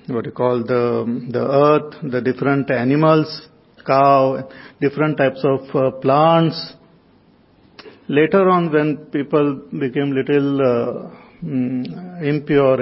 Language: English